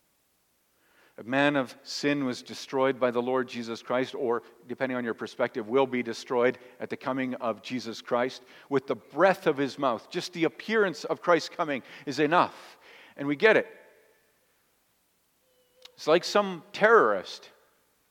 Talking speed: 155 wpm